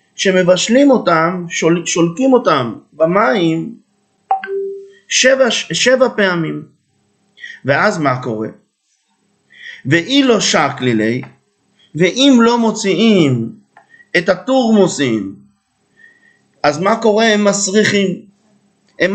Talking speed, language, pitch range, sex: 80 wpm, English, 180-240 Hz, male